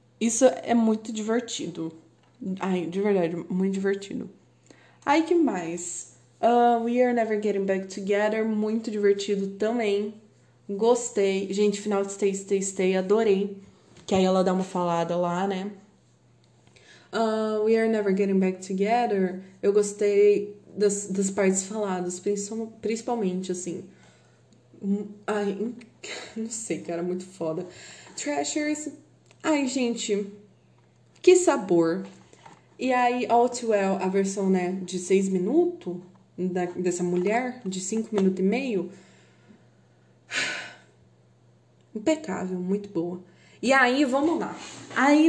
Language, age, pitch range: Portuguese, 20-39, 185-225 Hz